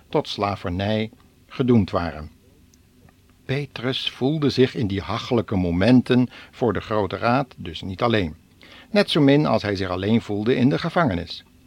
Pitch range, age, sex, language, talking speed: 95-130 Hz, 60-79, male, Dutch, 150 wpm